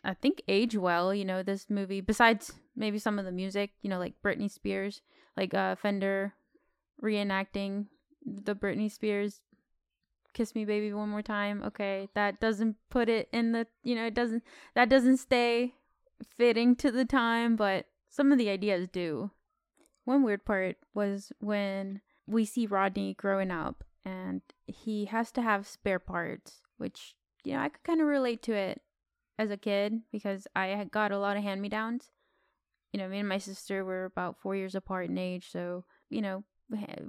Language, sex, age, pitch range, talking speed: English, female, 10-29, 195-225 Hz, 180 wpm